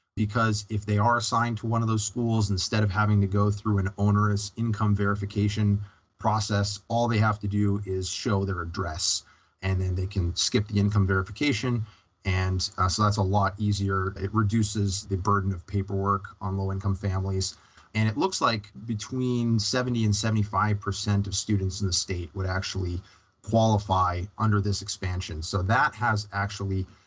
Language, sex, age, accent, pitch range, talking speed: English, male, 30-49, American, 100-115 Hz, 175 wpm